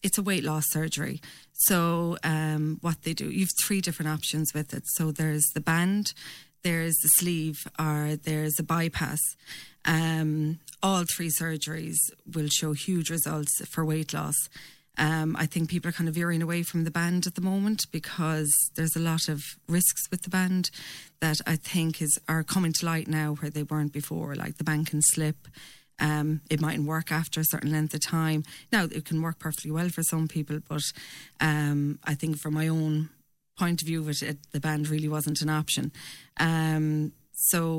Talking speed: 190 wpm